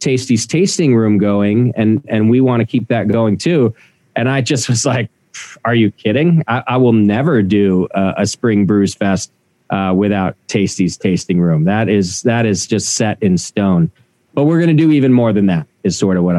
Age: 40-59